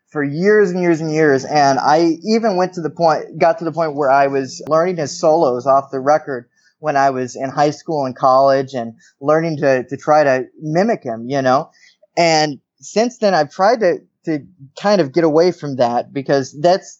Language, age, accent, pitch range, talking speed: English, 20-39, American, 135-165 Hz, 210 wpm